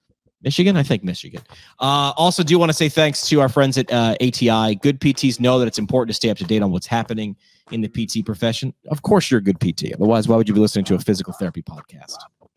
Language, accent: English, American